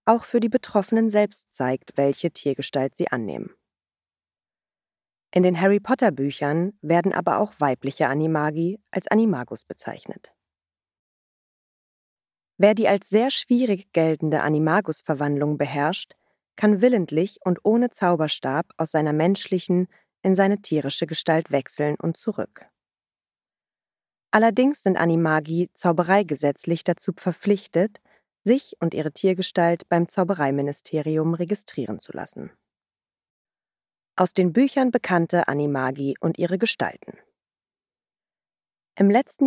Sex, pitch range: female, 150-200 Hz